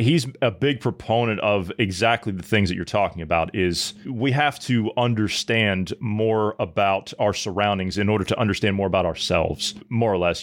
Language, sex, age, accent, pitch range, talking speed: English, male, 30-49, American, 105-125 Hz, 180 wpm